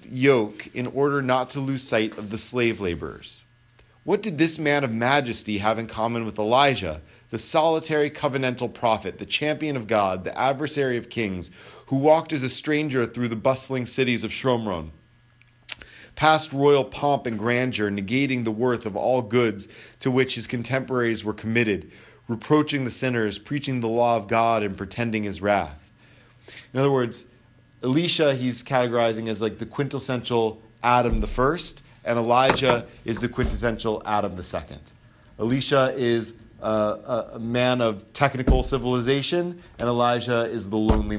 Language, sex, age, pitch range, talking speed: English, male, 40-59, 110-130 Hz, 155 wpm